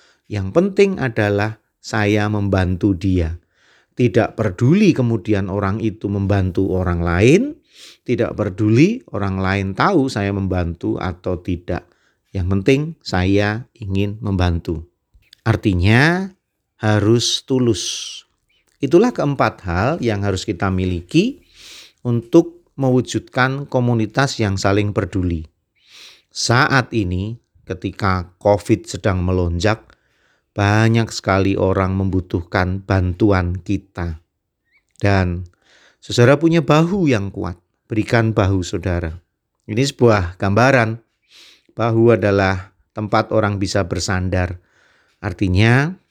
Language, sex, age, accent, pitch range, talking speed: Indonesian, male, 40-59, native, 95-115 Hz, 100 wpm